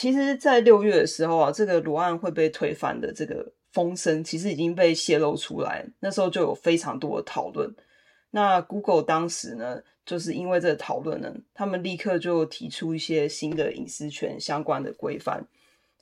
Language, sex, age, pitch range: Chinese, female, 20-39, 160-195 Hz